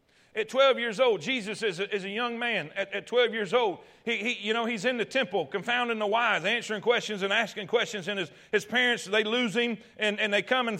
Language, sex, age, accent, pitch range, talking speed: English, male, 40-59, American, 235-295 Hz, 245 wpm